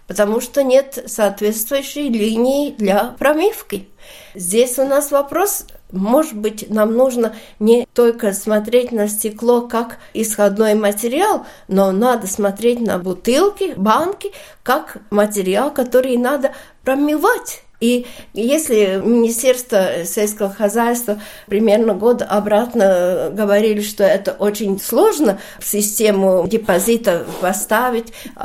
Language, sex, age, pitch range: Russian, female, 50-69, 205-270 Hz